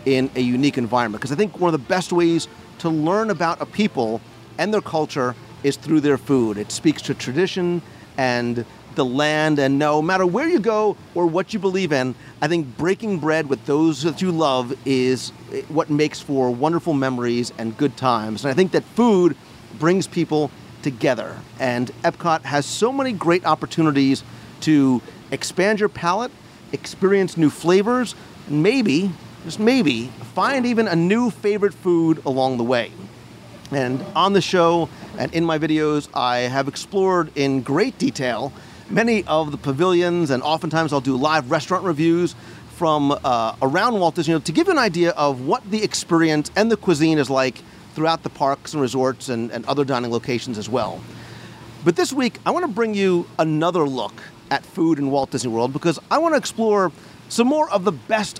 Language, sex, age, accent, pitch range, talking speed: English, male, 40-59, American, 135-185 Hz, 180 wpm